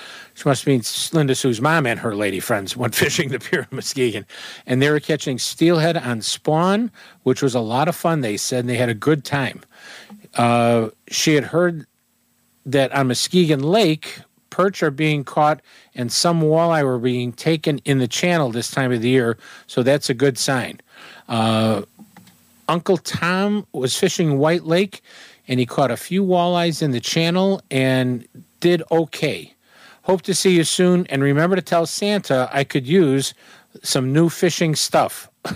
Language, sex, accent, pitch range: English, male, American, 125-175 Hz